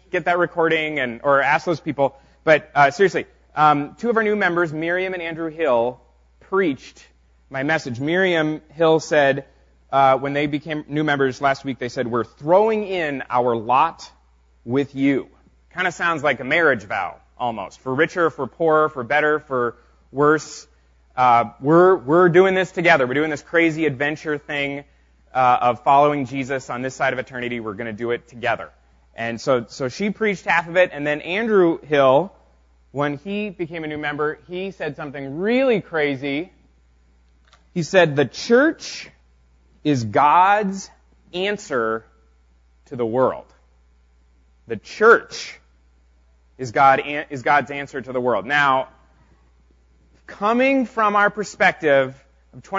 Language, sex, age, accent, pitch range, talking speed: English, male, 30-49, American, 120-170 Hz, 155 wpm